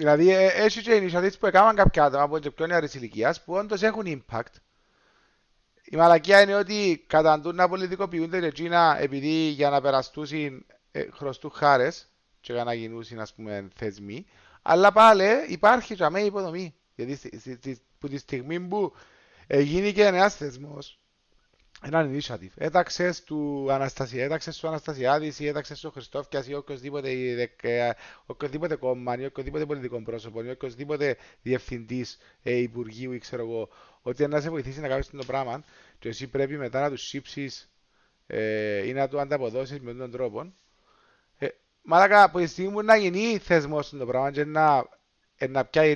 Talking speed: 160 wpm